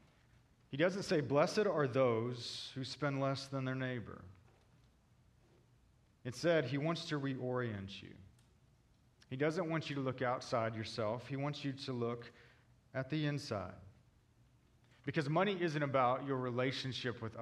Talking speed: 140 wpm